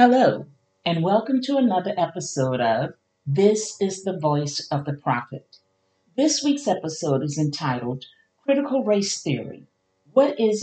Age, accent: 50-69, American